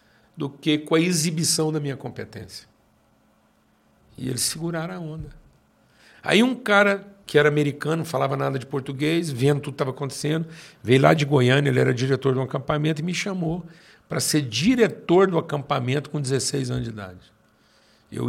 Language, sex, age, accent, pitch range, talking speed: Portuguese, male, 60-79, Brazilian, 135-185 Hz, 175 wpm